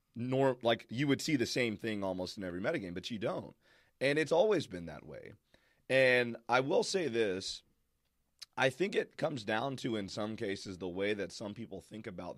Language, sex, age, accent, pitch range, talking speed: English, male, 30-49, American, 95-120 Hz, 205 wpm